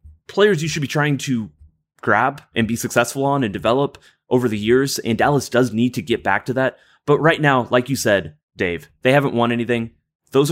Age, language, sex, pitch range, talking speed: 30-49, English, male, 105-140 Hz, 210 wpm